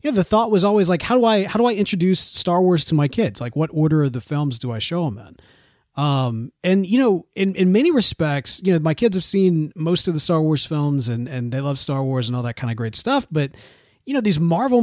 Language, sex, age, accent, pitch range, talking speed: English, male, 30-49, American, 145-190 Hz, 280 wpm